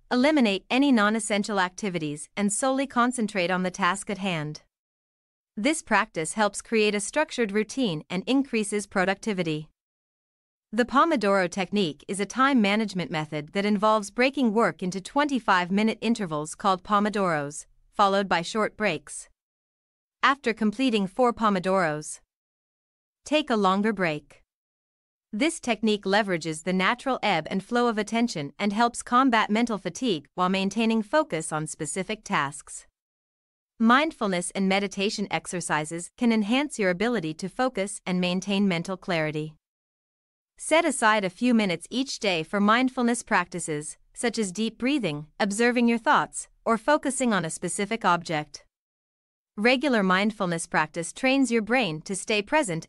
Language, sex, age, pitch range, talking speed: Vietnamese, female, 30-49, 175-230 Hz, 135 wpm